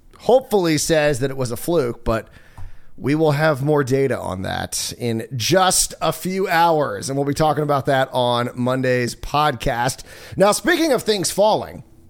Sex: male